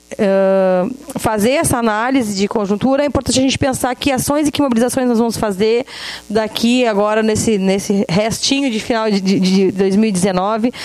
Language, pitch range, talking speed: Portuguese, 210-255 Hz, 160 wpm